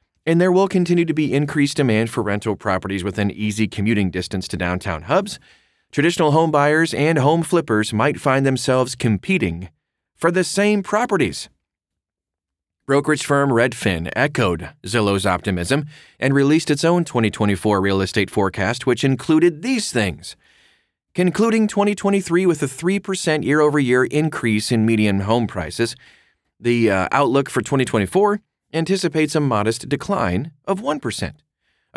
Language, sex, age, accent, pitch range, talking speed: English, male, 30-49, American, 100-145 Hz, 135 wpm